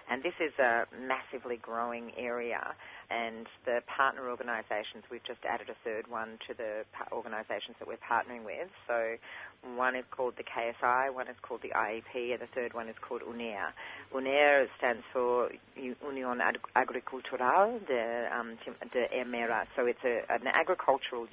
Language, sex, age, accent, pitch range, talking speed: English, female, 40-59, Australian, 115-125 Hz, 150 wpm